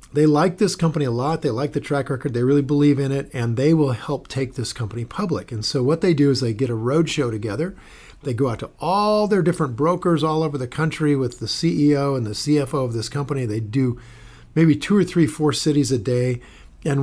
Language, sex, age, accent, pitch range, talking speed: English, male, 50-69, American, 115-145 Hz, 240 wpm